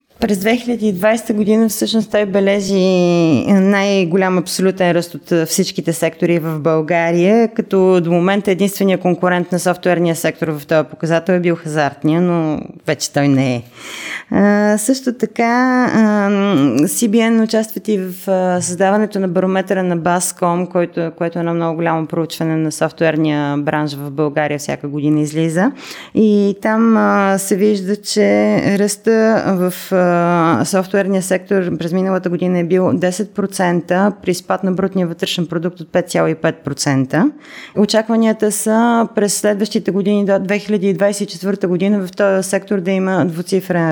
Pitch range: 170-205 Hz